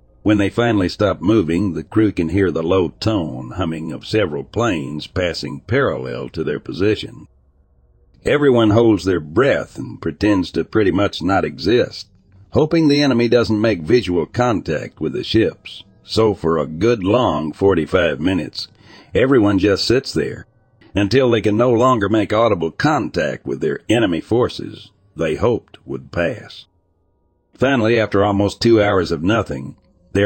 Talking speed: 155 wpm